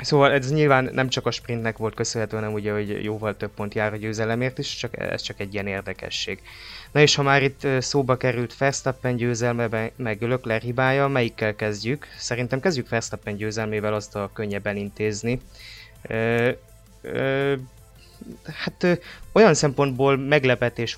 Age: 20-39